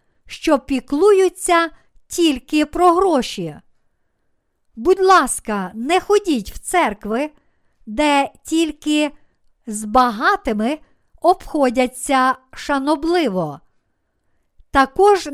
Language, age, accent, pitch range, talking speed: Ukrainian, 50-69, native, 245-335 Hz, 70 wpm